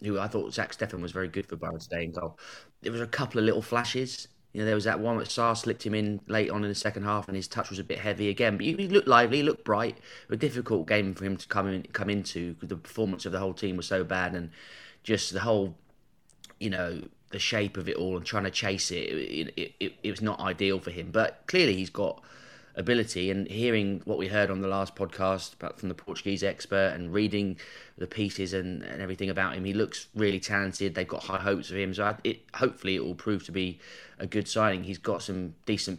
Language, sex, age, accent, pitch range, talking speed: English, male, 20-39, British, 90-105 Hz, 250 wpm